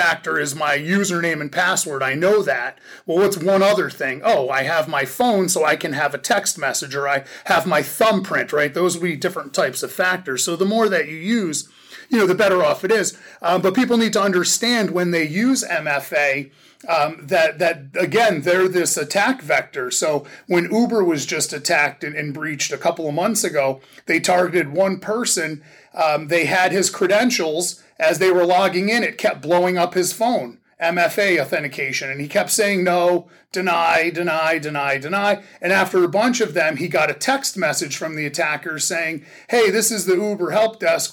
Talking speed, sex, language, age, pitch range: 200 wpm, male, English, 30-49, 160-200 Hz